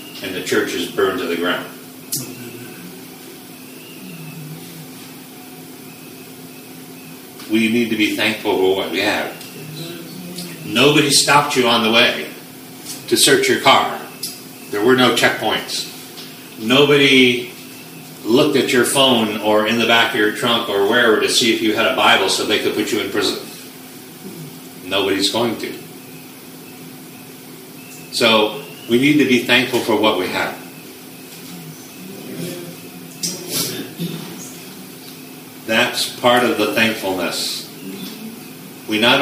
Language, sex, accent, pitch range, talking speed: English, male, American, 100-130 Hz, 120 wpm